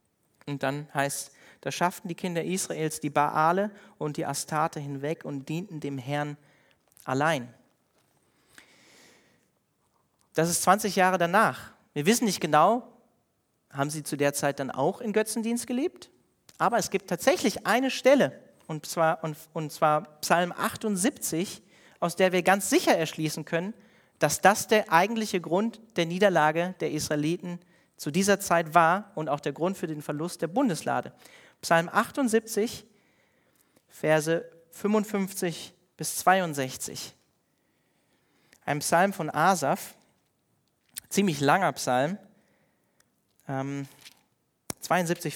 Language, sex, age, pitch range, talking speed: German, male, 40-59, 155-200 Hz, 125 wpm